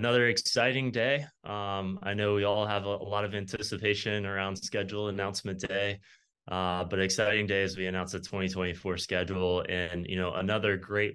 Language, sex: English, male